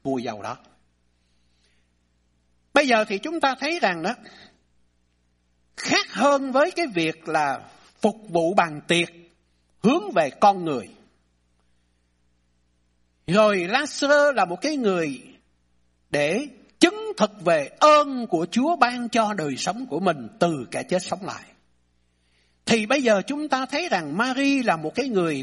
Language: Vietnamese